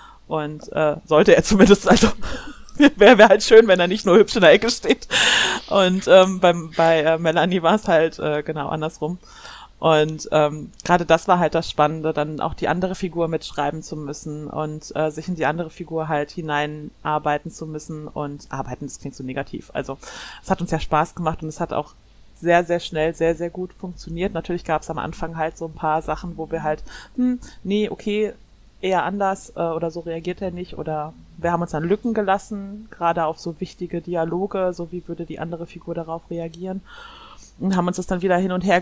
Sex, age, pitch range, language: female, 30-49, 160-185 Hz, German